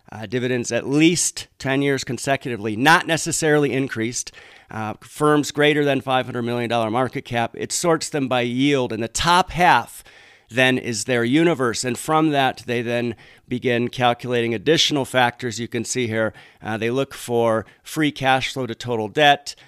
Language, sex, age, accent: English, male, 50-69, American